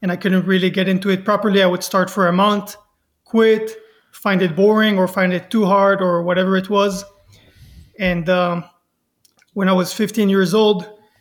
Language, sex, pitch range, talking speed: English, male, 185-205 Hz, 185 wpm